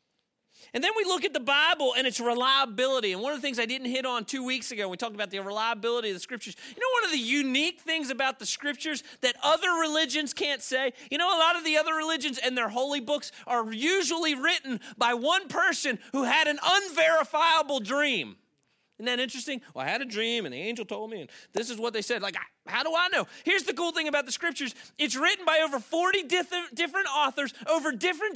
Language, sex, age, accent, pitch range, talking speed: English, male, 30-49, American, 245-330 Hz, 230 wpm